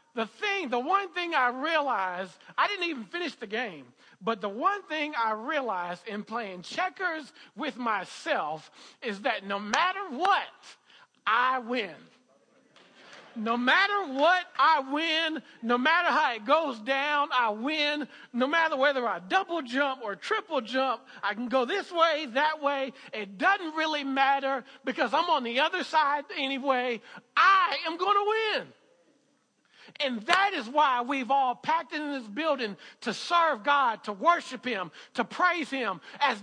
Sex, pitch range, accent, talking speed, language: male, 250-320 Hz, American, 160 wpm, English